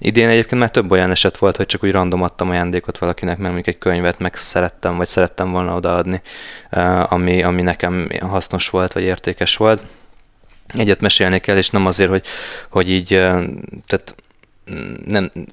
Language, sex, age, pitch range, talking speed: Hungarian, male, 20-39, 90-95 Hz, 165 wpm